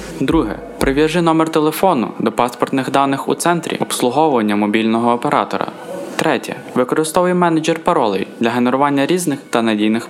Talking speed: 125 wpm